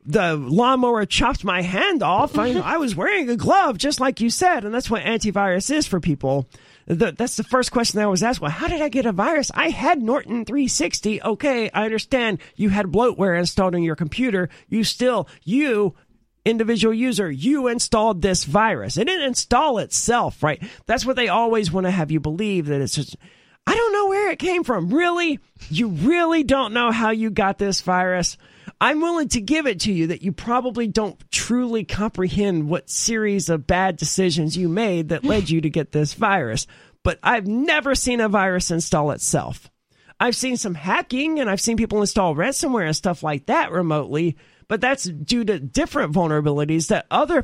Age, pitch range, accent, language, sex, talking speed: 40-59, 175-255 Hz, American, English, male, 195 wpm